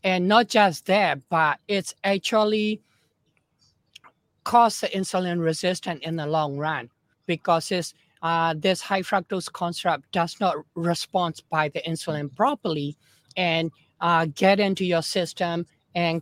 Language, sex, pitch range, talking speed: English, male, 165-210 Hz, 135 wpm